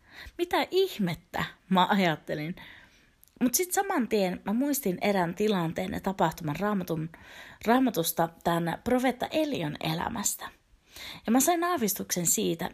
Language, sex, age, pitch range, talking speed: Finnish, female, 30-49, 170-240 Hz, 110 wpm